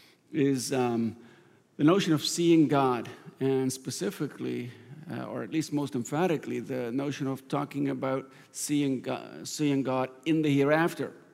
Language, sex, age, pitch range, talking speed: English, male, 50-69, 120-150 Hz, 145 wpm